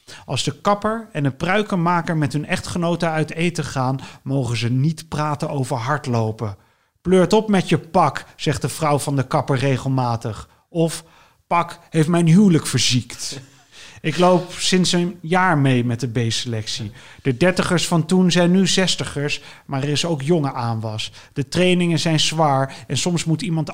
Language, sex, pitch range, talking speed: Dutch, male, 135-170 Hz, 165 wpm